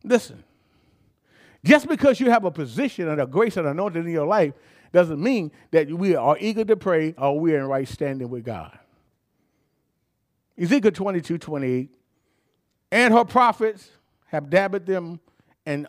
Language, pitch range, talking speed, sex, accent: English, 165-255 Hz, 155 wpm, male, American